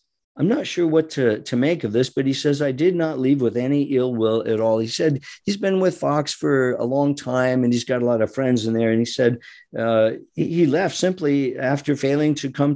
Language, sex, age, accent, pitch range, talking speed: English, male, 50-69, American, 115-150 Hz, 245 wpm